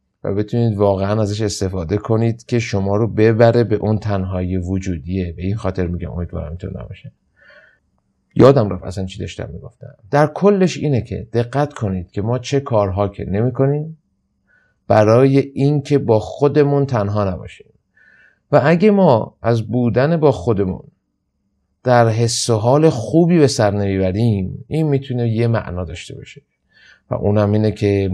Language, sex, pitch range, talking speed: Persian, male, 95-125 Hz, 145 wpm